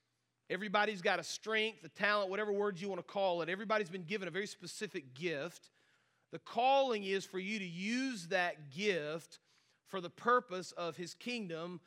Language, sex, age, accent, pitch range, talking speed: English, male, 40-59, American, 175-210 Hz, 175 wpm